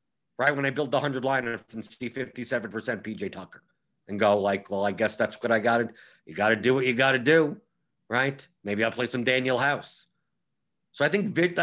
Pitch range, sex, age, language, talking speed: 125-175 Hz, male, 50-69, English, 215 wpm